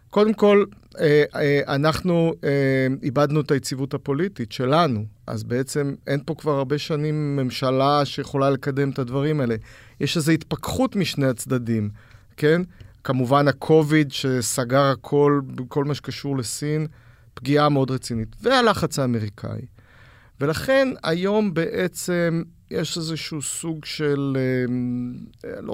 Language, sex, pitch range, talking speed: Hebrew, male, 125-155 Hz, 115 wpm